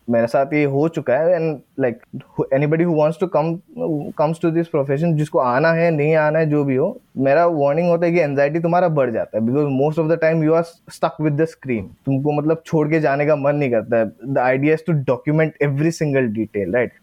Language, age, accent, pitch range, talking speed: English, 20-39, Indian, 140-170 Hz, 190 wpm